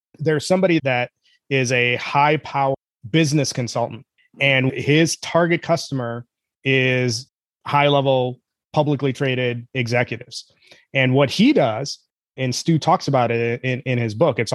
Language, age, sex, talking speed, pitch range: English, 30-49, male, 135 wpm, 130-165 Hz